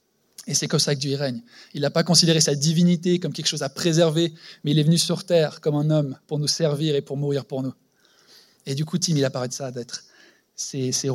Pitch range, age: 140-180 Hz, 20-39